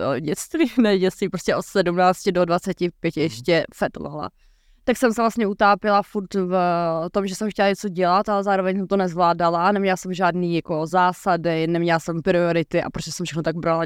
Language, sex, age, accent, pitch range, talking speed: Czech, female, 20-39, native, 170-200 Hz, 180 wpm